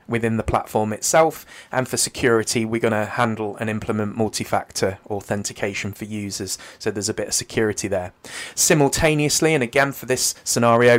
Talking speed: 165 wpm